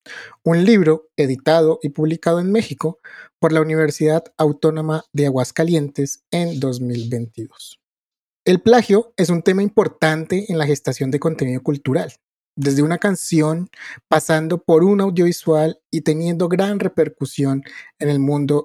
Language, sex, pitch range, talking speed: Spanish, male, 150-185 Hz, 130 wpm